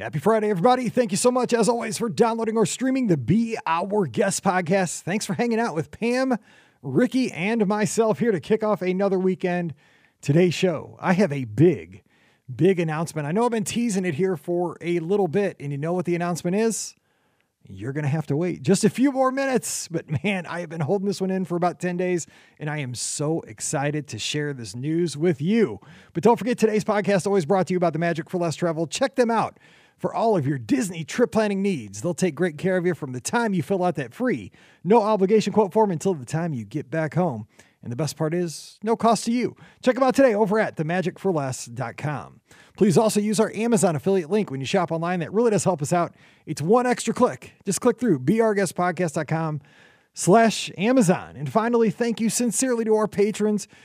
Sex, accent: male, American